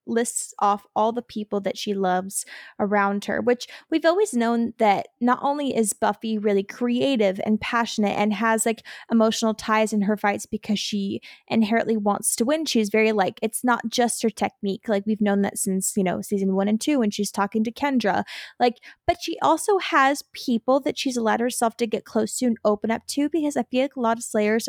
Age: 20-39